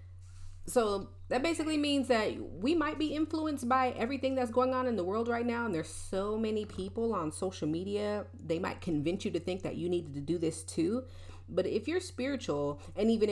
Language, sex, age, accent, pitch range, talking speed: English, female, 30-49, American, 140-220 Hz, 205 wpm